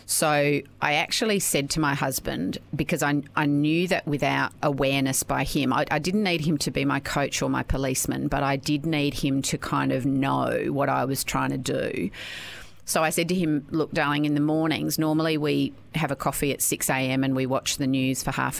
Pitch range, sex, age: 140-160 Hz, female, 30-49